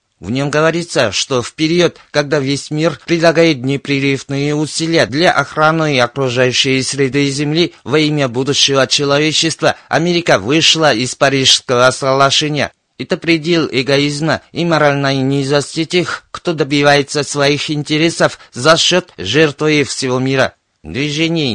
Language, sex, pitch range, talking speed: Russian, male, 135-160 Hz, 125 wpm